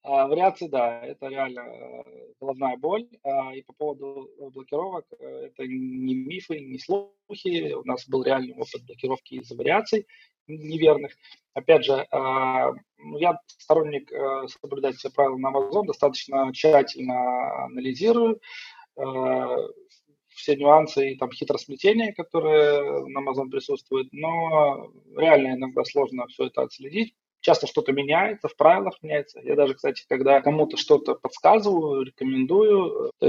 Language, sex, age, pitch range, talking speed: Russian, male, 20-39, 140-230 Hz, 120 wpm